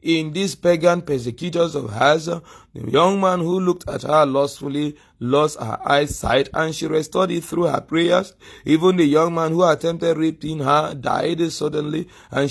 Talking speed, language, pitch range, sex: 170 wpm, English, 140-175 Hz, male